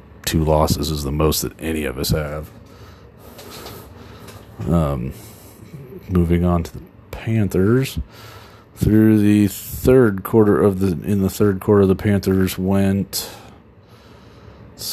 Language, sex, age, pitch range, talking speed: English, male, 40-59, 85-100 Hz, 120 wpm